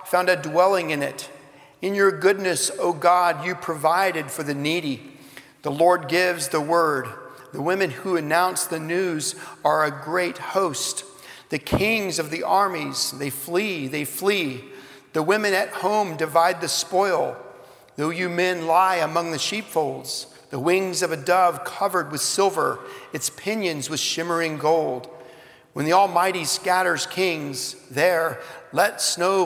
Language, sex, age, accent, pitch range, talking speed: English, male, 50-69, American, 160-185 Hz, 150 wpm